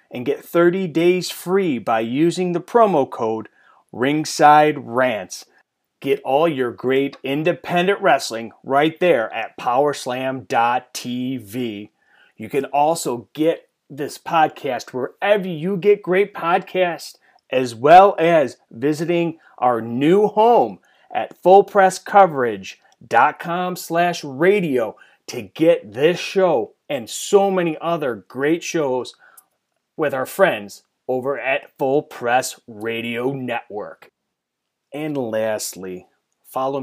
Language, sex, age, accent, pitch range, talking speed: English, male, 30-49, American, 120-170 Hz, 105 wpm